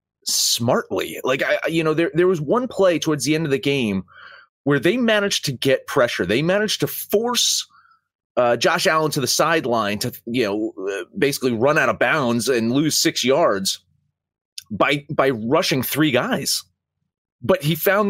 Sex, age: male, 30-49